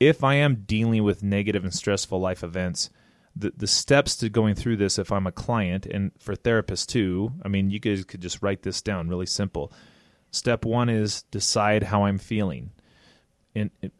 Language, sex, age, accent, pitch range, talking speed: English, male, 30-49, American, 95-115 Hz, 195 wpm